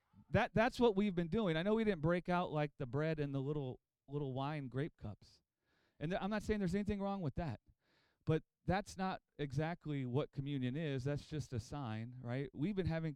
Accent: American